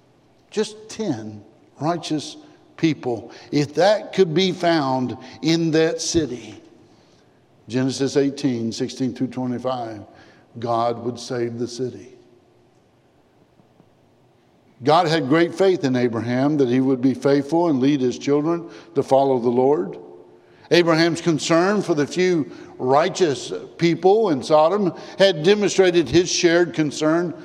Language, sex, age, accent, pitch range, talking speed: English, male, 60-79, American, 130-195 Hz, 115 wpm